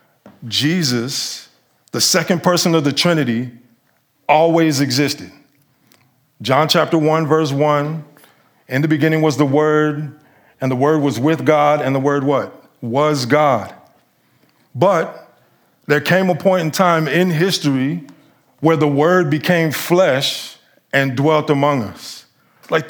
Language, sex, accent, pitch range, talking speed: English, male, American, 140-165 Hz, 135 wpm